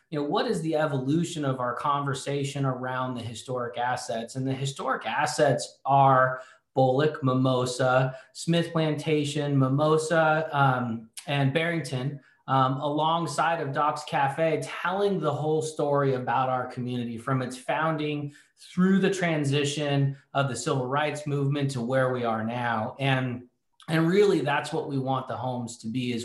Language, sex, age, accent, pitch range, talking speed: English, male, 30-49, American, 130-155 Hz, 150 wpm